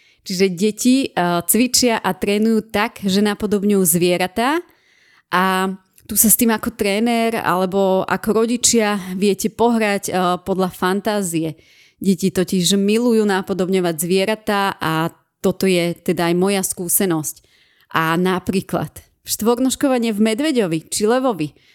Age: 30-49